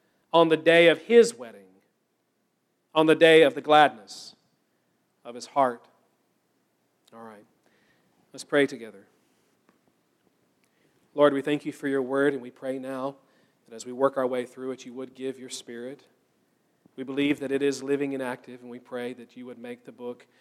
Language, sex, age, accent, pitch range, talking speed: English, male, 40-59, American, 125-155 Hz, 180 wpm